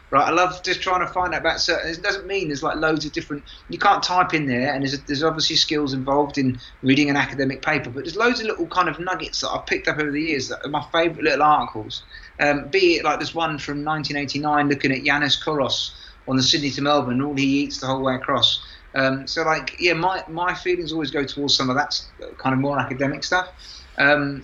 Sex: male